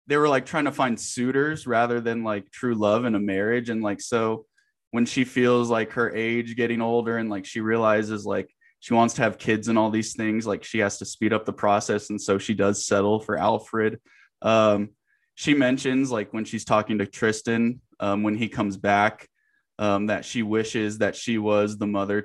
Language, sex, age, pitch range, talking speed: English, male, 20-39, 105-130 Hz, 210 wpm